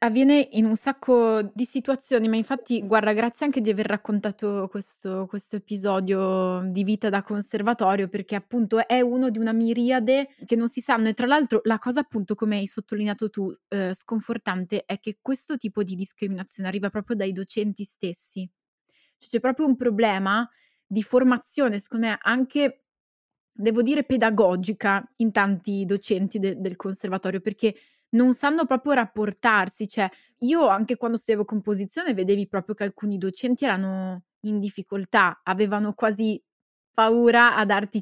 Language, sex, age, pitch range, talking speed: Italian, female, 20-39, 200-245 Hz, 150 wpm